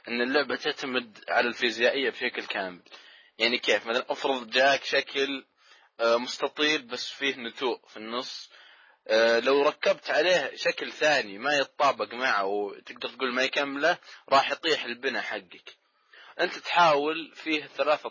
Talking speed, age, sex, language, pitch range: 130 wpm, 20-39, male, Arabic, 110-150 Hz